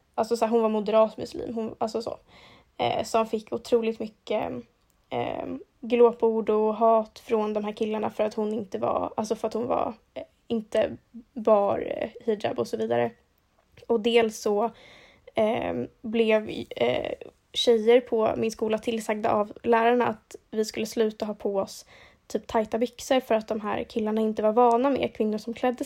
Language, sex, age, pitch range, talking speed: Swedish, female, 10-29, 220-240 Hz, 175 wpm